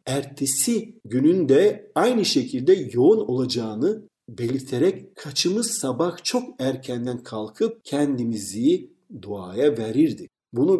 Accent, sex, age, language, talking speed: native, male, 50-69, Turkish, 90 wpm